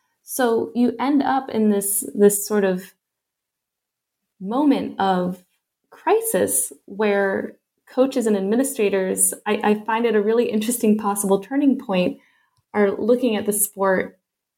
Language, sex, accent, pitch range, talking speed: English, female, American, 195-235 Hz, 130 wpm